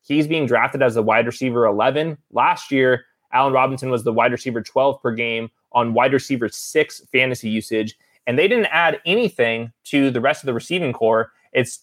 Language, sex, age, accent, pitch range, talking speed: English, male, 20-39, American, 125-150 Hz, 195 wpm